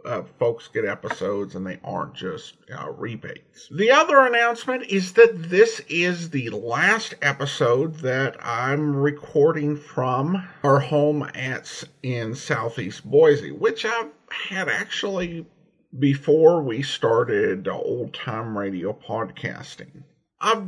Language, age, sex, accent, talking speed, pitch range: English, 50-69, male, American, 120 wpm, 125-185 Hz